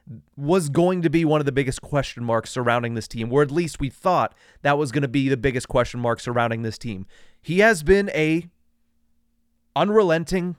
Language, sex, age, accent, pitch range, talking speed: English, male, 30-49, American, 125-165 Hz, 200 wpm